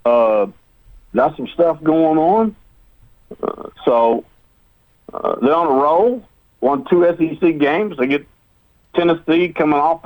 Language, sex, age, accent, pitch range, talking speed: English, male, 60-79, American, 115-165 Hz, 130 wpm